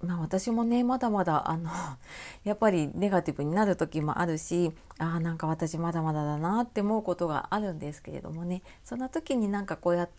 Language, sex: Japanese, female